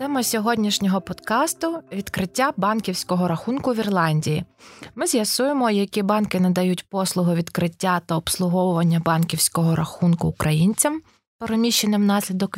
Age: 20-39